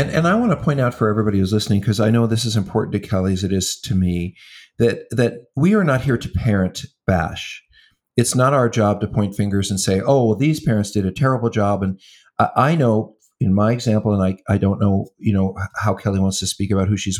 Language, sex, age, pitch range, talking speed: English, male, 50-69, 100-135 Hz, 250 wpm